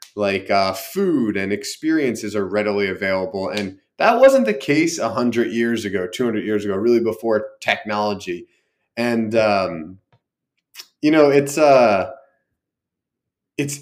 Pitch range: 105-155 Hz